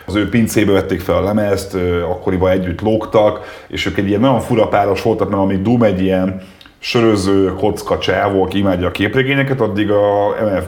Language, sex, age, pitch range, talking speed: Hungarian, male, 30-49, 95-110 Hz, 190 wpm